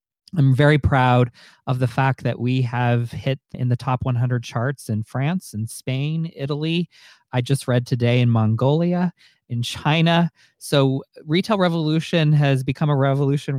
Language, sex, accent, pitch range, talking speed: English, male, American, 120-140 Hz, 155 wpm